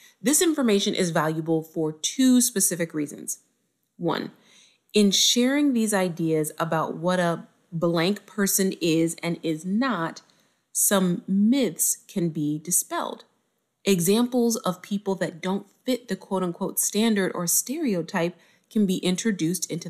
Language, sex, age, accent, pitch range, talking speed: English, female, 30-49, American, 175-240 Hz, 130 wpm